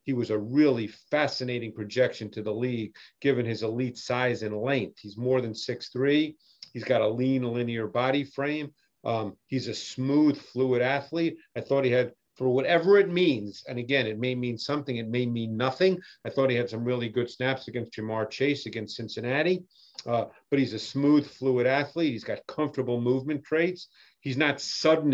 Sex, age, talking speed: male, 50-69, 185 wpm